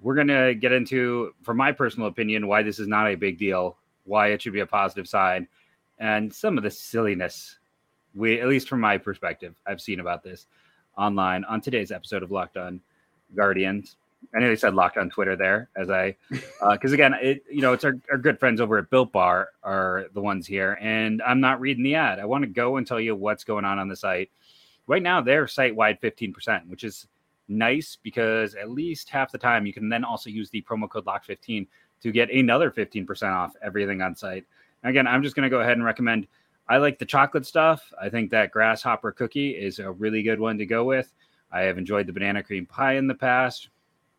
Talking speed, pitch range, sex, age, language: 220 wpm, 100-130 Hz, male, 30-49, English